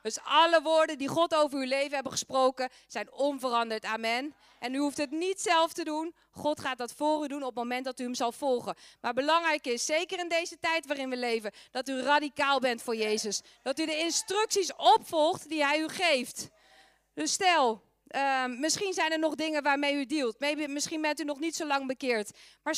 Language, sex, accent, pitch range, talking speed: Dutch, female, Dutch, 265-325 Hz, 215 wpm